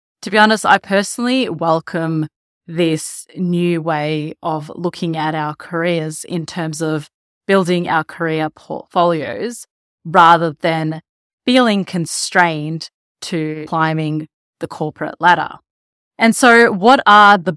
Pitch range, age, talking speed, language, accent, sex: 160-190 Hz, 20-39, 120 wpm, English, Australian, female